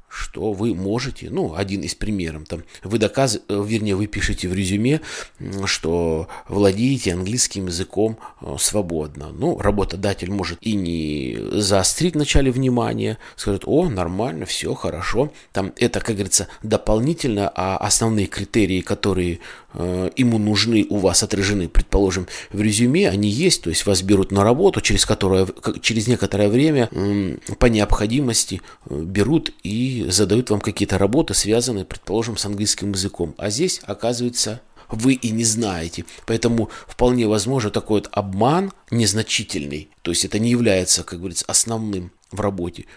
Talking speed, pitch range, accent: 145 wpm, 95-115 Hz, native